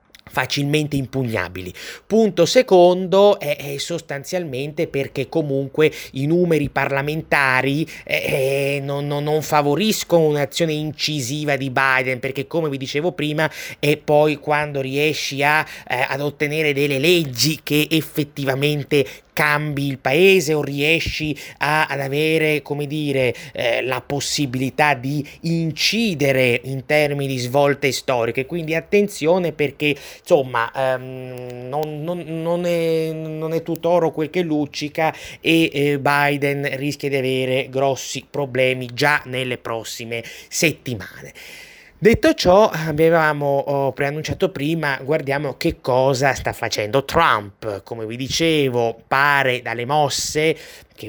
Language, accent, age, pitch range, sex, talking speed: Italian, native, 30-49, 130-155 Hz, male, 115 wpm